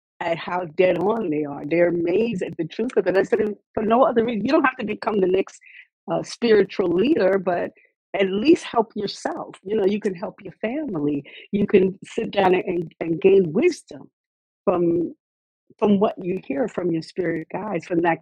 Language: English